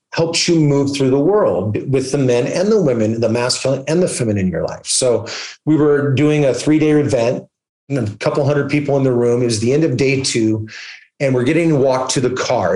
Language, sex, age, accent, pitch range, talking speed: English, male, 30-49, American, 125-155 Hz, 235 wpm